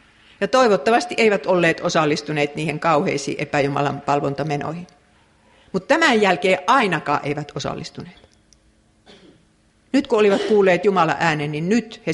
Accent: native